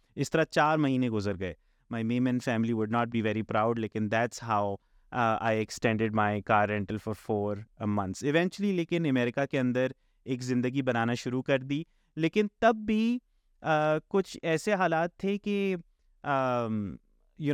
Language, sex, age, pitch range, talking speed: Urdu, male, 30-49, 120-170 Hz, 155 wpm